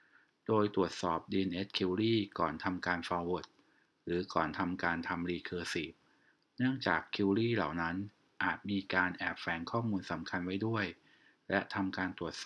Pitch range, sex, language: 90-105 Hz, male, Thai